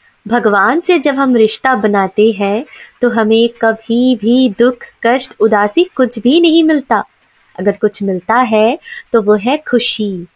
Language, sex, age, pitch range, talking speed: Hindi, female, 20-39, 200-255 Hz, 150 wpm